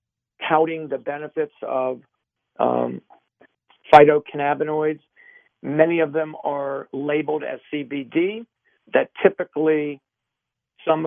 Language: English